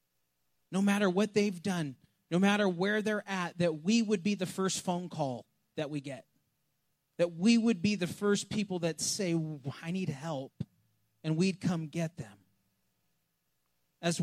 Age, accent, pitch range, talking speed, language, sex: 30-49, American, 145-195 Hz, 165 wpm, English, male